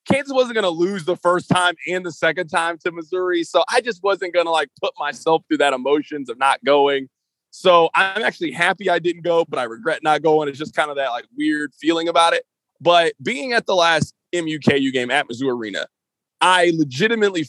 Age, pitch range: 20-39, 145-190 Hz